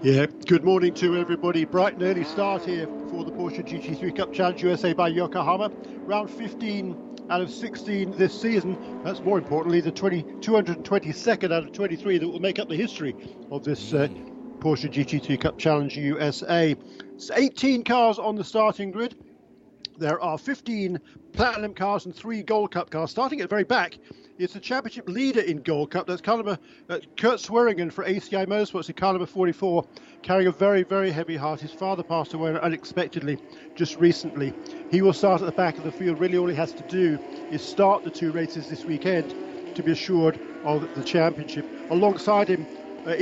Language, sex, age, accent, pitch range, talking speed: English, male, 50-69, British, 165-210 Hz, 190 wpm